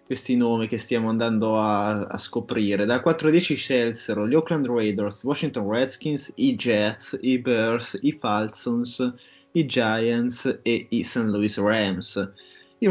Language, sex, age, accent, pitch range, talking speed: Italian, male, 20-39, native, 110-140 Hz, 150 wpm